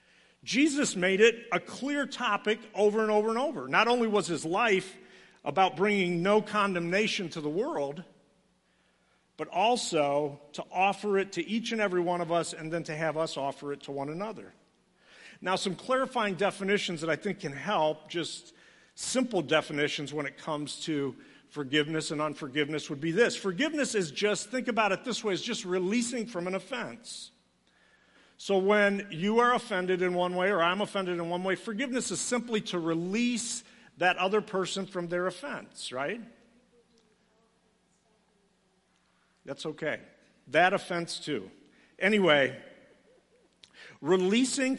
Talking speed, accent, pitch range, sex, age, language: 155 wpm, American, 170-220 Hz, male, 50-69, English